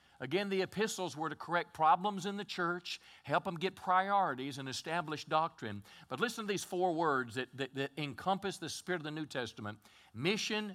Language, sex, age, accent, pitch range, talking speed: English, male, 50-69, American, 140-195 Hz, 190 wpm